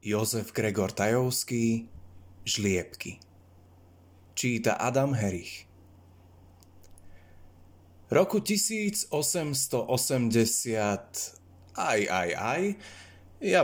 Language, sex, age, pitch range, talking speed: Slovak, male, 20-39, 90-125 Hz, 55 wpm